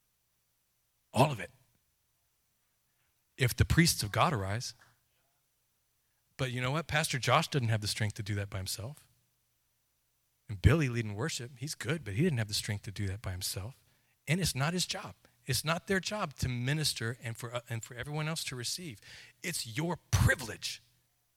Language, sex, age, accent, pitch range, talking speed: English, male, 40-59, American, 110-155 Hz, 180 wpm